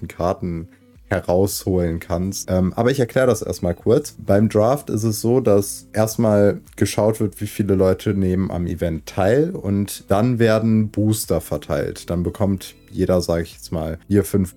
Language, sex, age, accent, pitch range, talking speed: German, male, 30-49, German, 90-120 Hz, 165 wpm